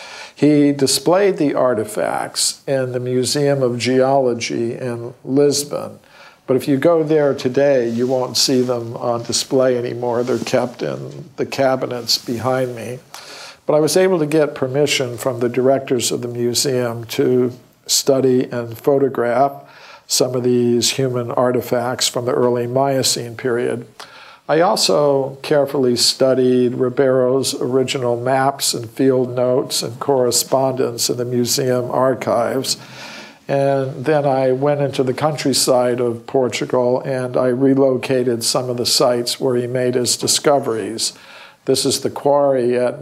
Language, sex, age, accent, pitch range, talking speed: English, male, 50-69, American, 125-135 Hz, 140 wpm